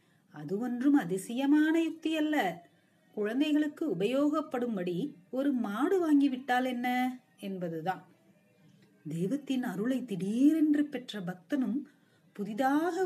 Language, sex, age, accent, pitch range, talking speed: Tamil, female, 30-49, native, 190-290 Hz, 85 wpm